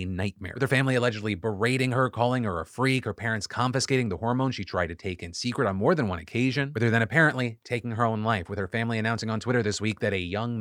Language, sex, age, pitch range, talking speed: English, male, 30-49, 115-150 Hz, 265 wpm